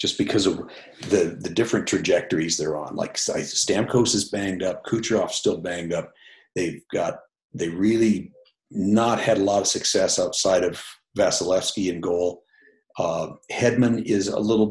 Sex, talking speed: male, 160 wpm